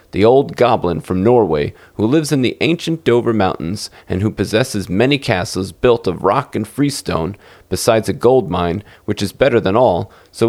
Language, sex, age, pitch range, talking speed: English, male, 30-49, 95-130 Hz, 185 wpm